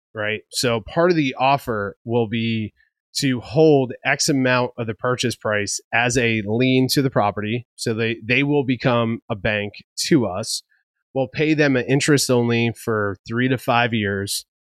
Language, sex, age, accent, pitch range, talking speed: English, male, 30-49, American, 115-145 Hz, 170 wpm